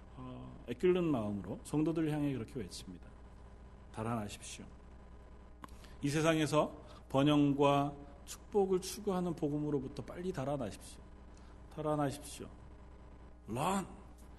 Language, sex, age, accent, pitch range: Korean, male, 40-59, native, 115-190 Hz